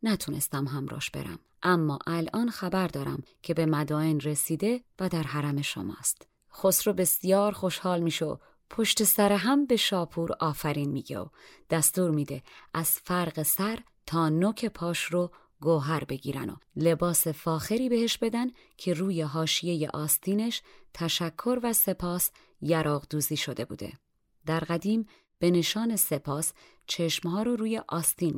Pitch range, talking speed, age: 150-200 Hz, 135 wpm, 30-49